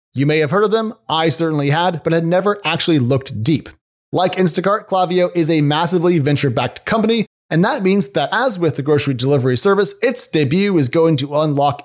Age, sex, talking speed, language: 30-49, male, 195 wpm, English